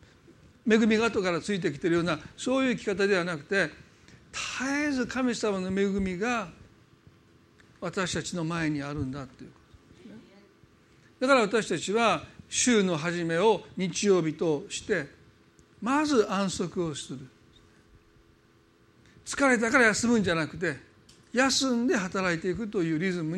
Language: Japanese